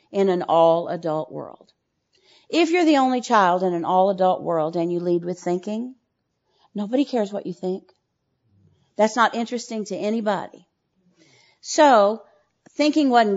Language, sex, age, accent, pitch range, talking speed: English, female, 50-69, American, 170-225 Hz, 140 wpm